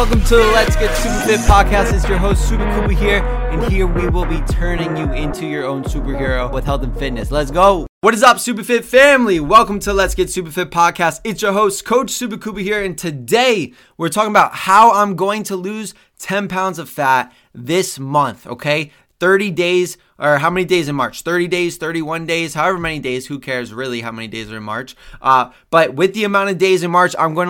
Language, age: English, 20-39